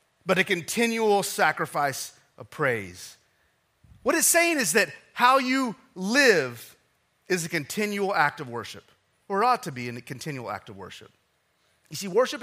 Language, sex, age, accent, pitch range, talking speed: English, male, 30-49, American, 140-230 Hz, 160 wpm